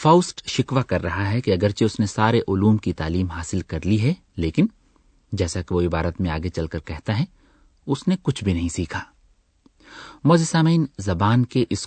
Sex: male